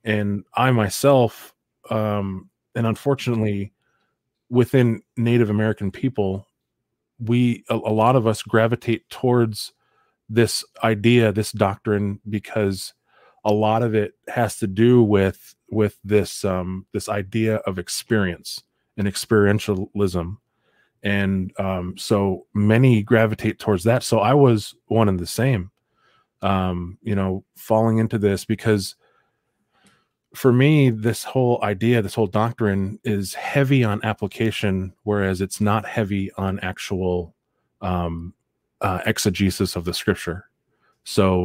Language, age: English, 20-39